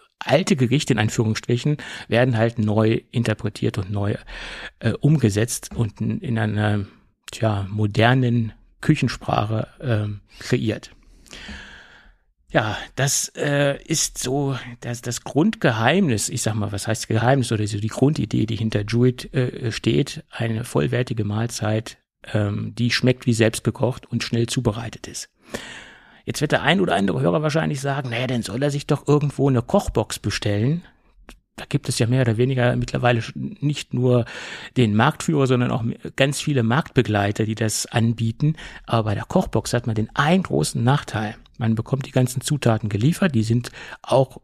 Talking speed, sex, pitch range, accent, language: 155 wpm, male, 110-135 Hz, German, German